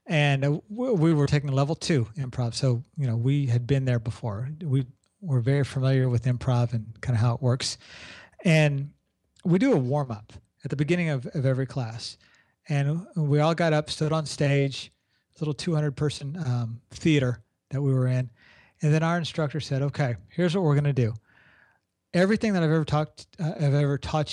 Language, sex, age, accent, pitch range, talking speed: English, male, 40-59, American, 125-160 Hz, 190 wpm